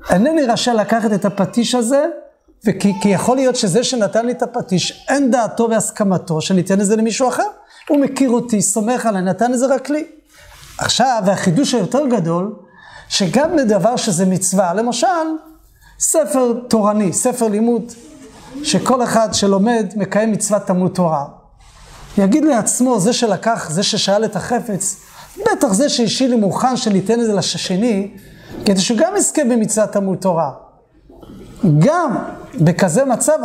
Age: 30-49